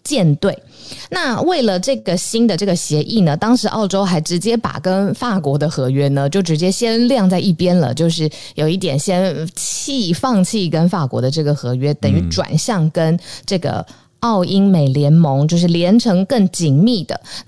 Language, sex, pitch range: Chinese, female, 150-210 Hz